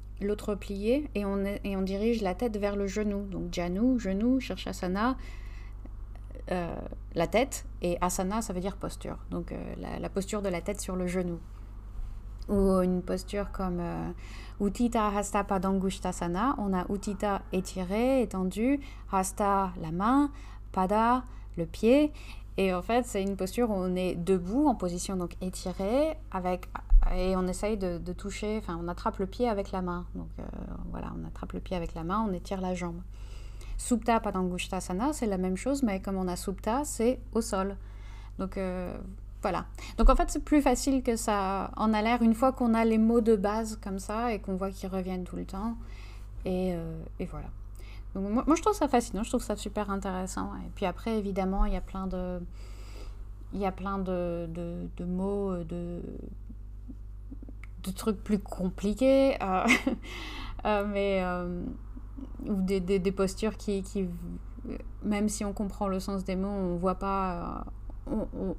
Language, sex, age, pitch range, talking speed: French, female, 30-49, 175-210 Hz, 180 wpm